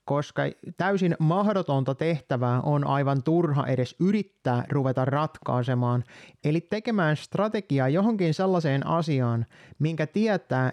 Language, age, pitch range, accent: Finnish, 30-49, 130-175 Hz, native